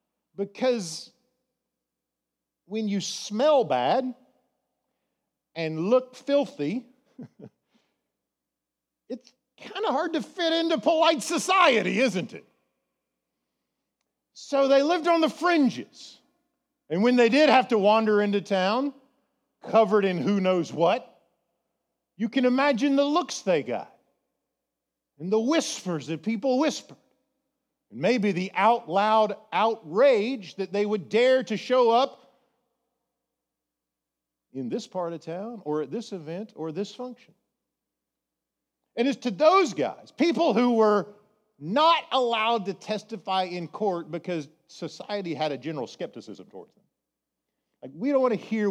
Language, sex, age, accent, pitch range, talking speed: English, male, 50-69, American, 185-265 Hz, 130 wpm